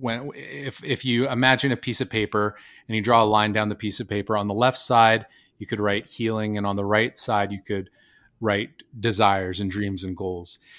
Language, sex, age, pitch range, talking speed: English, male, 30-49, 105-125 Hz, 215 wpm